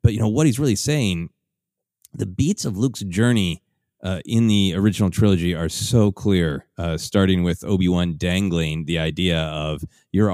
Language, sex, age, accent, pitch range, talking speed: English, male, 30-49, American, 85-105 Hz, 170 wpm